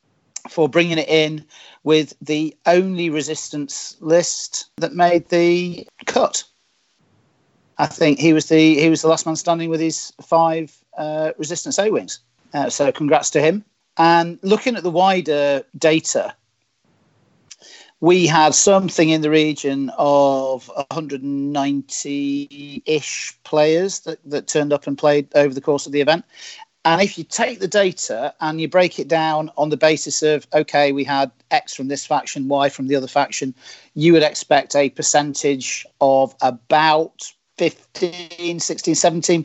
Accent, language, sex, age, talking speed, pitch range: British, English, male, 40-59, 150 wpm, 140-170 Hz